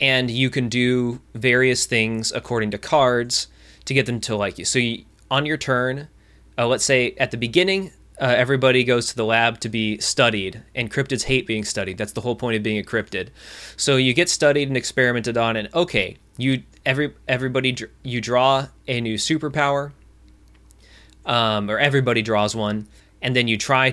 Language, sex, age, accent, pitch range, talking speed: English, male, 20-39, American, 105-130 Hz, 185 wpm